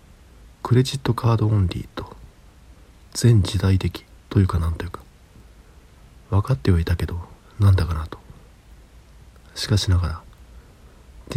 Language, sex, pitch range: Japanese, male, 85-110 Hz